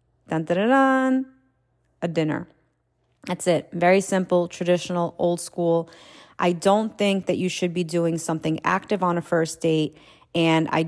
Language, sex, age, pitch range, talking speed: English, female, 30-49, 165-185 Hz, 140 wpm